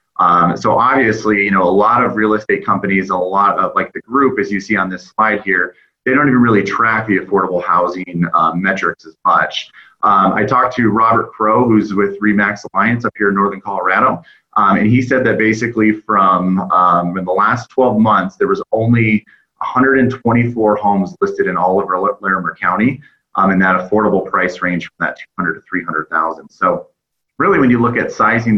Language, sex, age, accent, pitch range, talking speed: English, male, 30-49, American, 95-110 Hz, 195 wpm